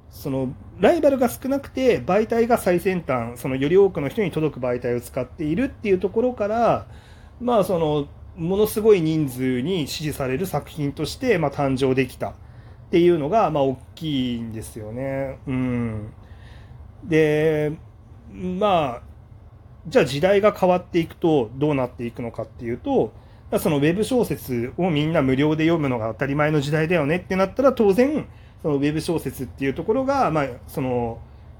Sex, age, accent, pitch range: male, 30-49, native, 120-175 Hz